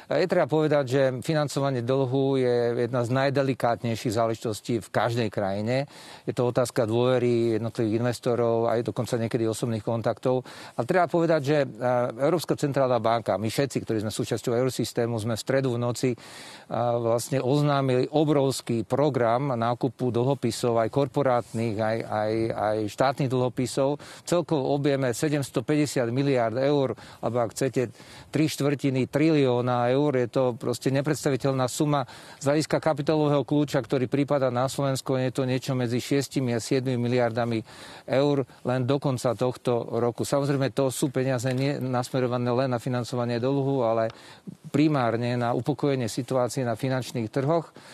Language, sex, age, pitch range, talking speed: Slovak, male, 50-69, 120-140 Hz, 140 wpm